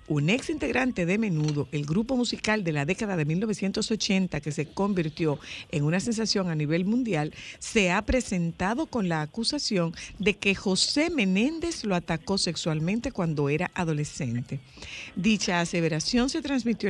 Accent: American